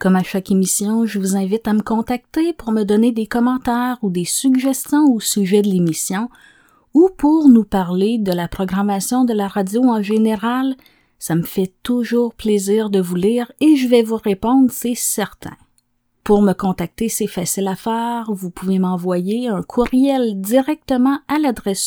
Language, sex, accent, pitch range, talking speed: French, female, Canadian, 195-255 Hz, 175 wpm